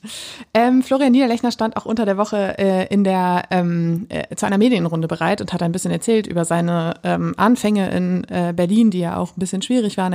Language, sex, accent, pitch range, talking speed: German, female, German, 180-220 Hz, 215 wpm